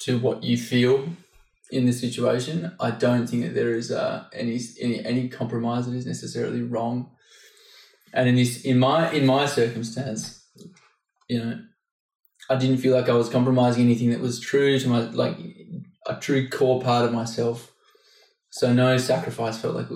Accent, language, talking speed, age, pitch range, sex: Australian, English, 175 wpm, 20-39, 115-130 Hz, male